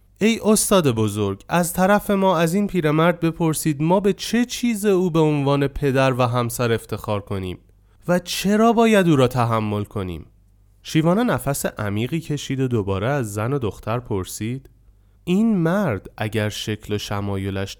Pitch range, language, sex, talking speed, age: 130-195 Hz, Persian, male, 155 wpm, 30-49